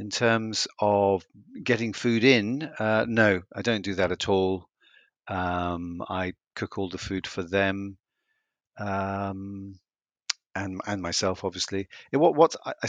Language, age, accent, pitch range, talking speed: English, 50-69, British, 95-115 Hz, 145 wpm